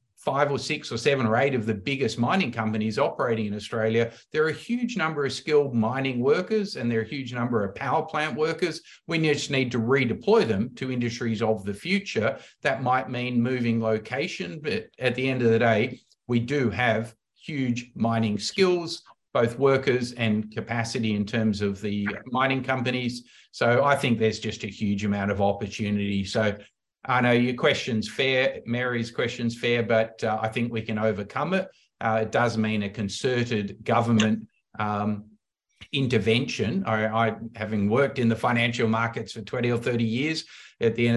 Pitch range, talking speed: 110-125 Hz, 180 wpm